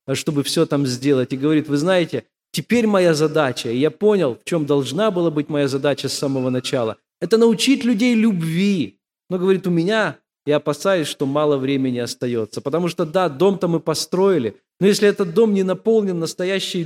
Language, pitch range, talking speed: Russian, 140-190 Hz, 180 wpm